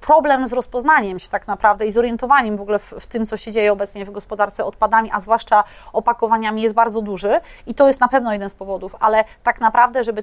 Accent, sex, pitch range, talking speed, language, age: native, female, 205-230 Hz, 230 wpm, Polish, 30-49